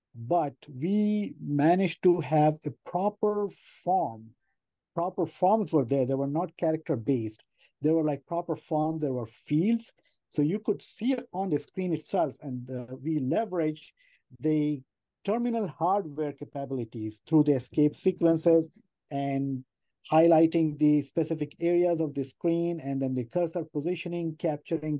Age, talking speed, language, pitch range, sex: 50-69, 140 wpm, English, 135-170 Hz, male